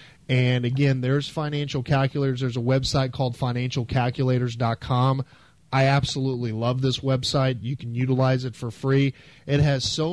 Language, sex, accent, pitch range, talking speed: English, male, American, 125-145 Hz, 140 wpm